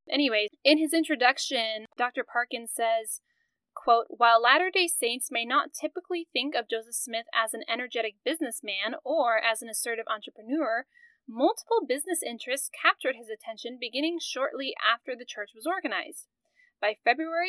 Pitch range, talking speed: 230-320 Hz, 150 wpm